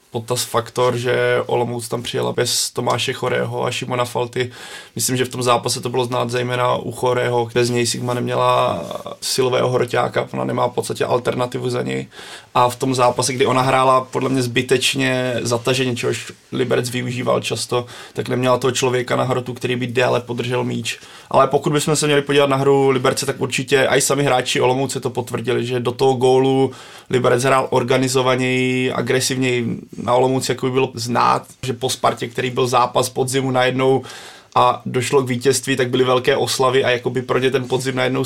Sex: male